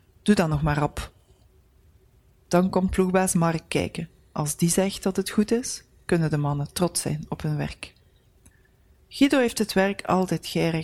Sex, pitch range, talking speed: female, 125-185 Hz, 170 wpm